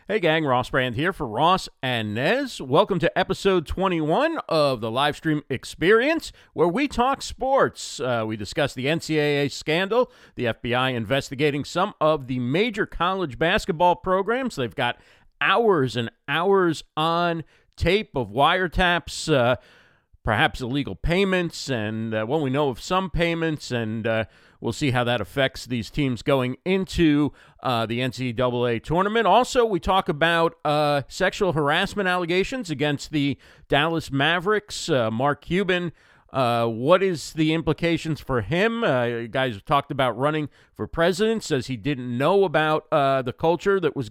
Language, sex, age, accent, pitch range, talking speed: English, male, 40-59, American, 130-185 Hz, 160 wpm